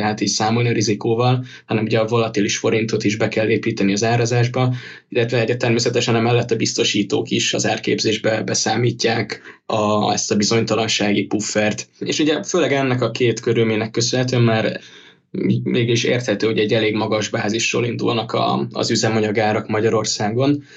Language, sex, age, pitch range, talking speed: Hungarian, male, 10-29, 105-115 Hz, 145 wpm